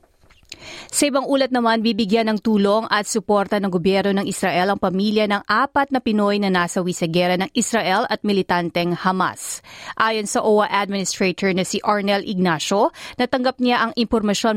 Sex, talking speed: female, 160 wpm